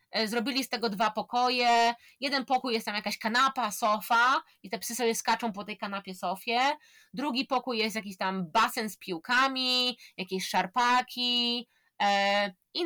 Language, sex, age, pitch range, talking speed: Polish, female, 20-39, 200-255 Hz, 150 wpm